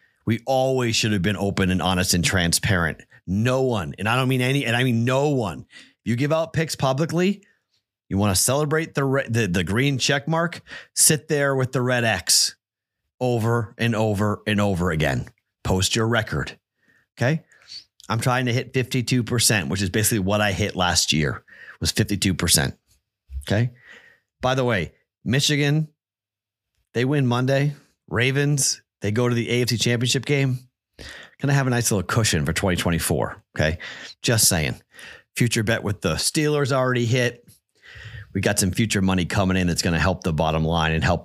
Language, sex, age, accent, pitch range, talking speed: English, male, 30-49, American, 95-130 Hz, 170 wpm